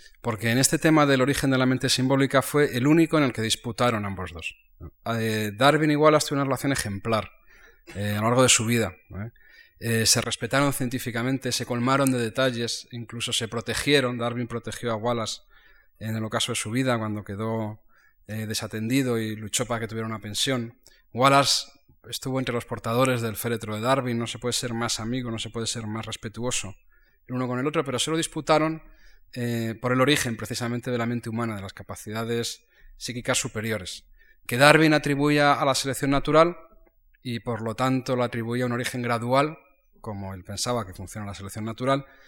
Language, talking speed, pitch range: Spanish, 190 wpm, 110-135 Hz